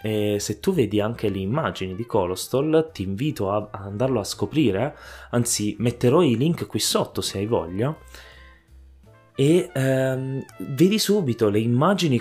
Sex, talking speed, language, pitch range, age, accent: male, 145 wpm, Italian, 100-130 Hz, 20-39, native